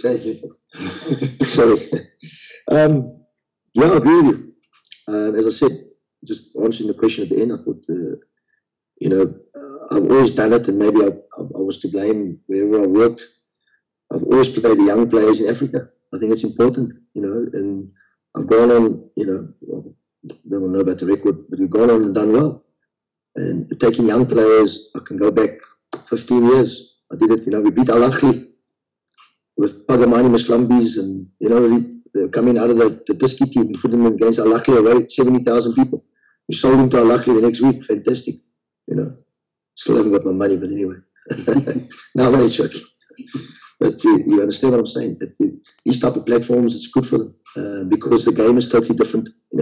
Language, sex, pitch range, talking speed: English, male, 110-125 Hz, 190 wpm